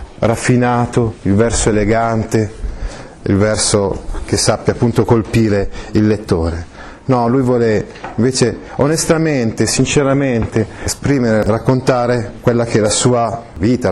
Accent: native